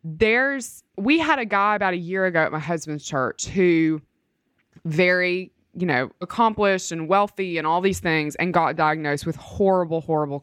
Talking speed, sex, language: 175 wpm, female, English